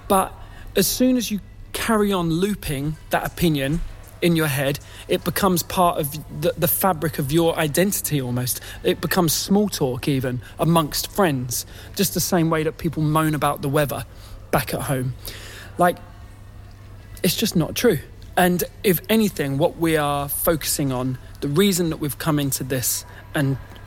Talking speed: 165 wpm